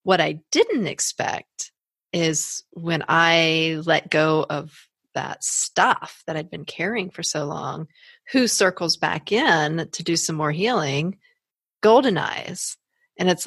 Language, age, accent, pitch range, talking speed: English, 40-59, American, 155-195 Hz, 145 wpm